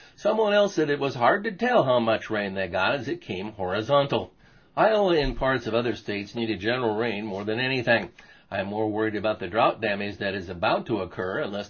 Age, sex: 60-79, male